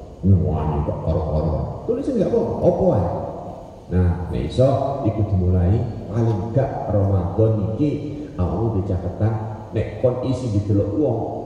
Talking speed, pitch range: 120 wpm, 95-115 Hz